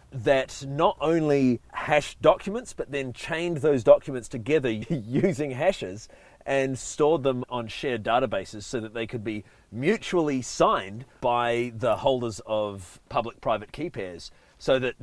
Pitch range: 110-145 Hz